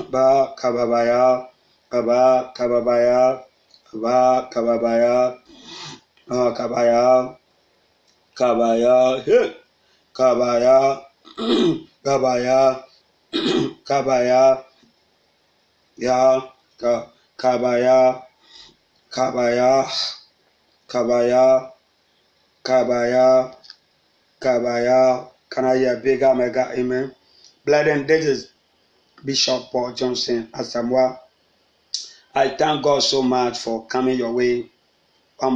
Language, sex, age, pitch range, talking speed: English, male, 30-49, 120-130 Hz, 60 wpm